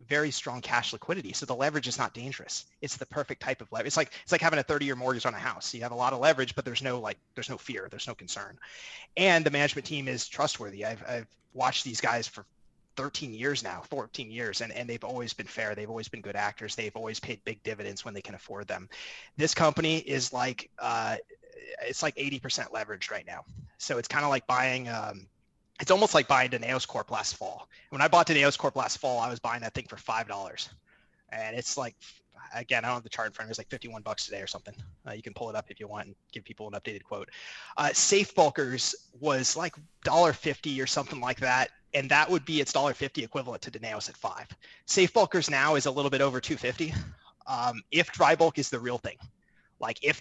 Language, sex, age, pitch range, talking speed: English, male, 30-49, 115-150 Hz, 240 wpm